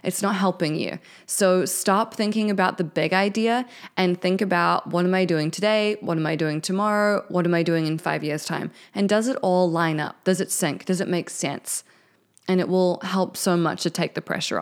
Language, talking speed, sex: English, 225 wpm, female